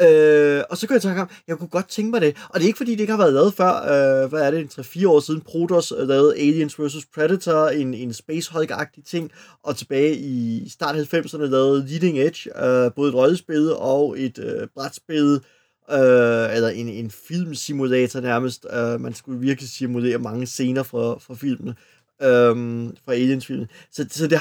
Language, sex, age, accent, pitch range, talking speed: Danish, male, 30-49, native, 130-160 Hz, 195 wpm